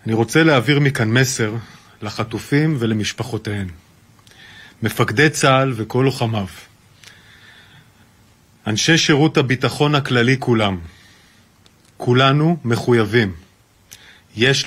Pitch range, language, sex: 110-135 Hz, Hebrew, male